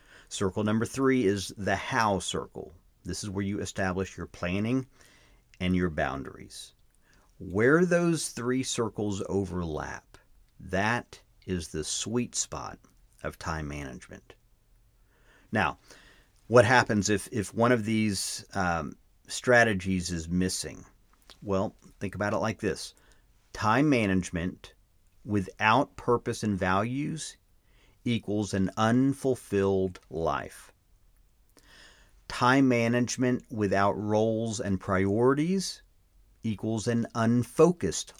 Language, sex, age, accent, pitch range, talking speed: English, male, 50-69, American, 95-125 Hz, 105 wpm